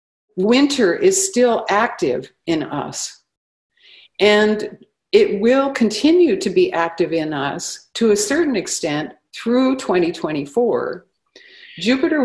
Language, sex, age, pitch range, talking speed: English, female, 50-69, 170-230 Hz, 110 wpm